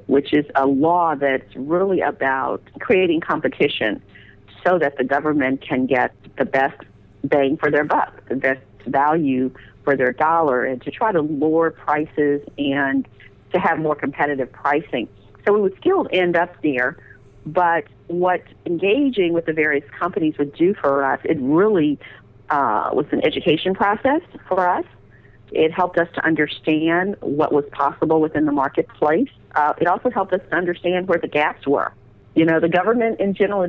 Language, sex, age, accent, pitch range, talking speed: English, female, 50-69, American, 135-175 Hz, 165 wpm